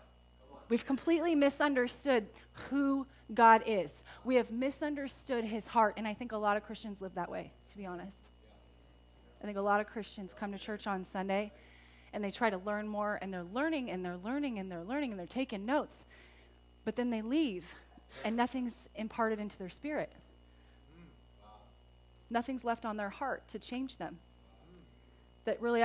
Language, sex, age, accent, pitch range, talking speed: English, female, 30-49, American, 190-250 Hz, 170 wpm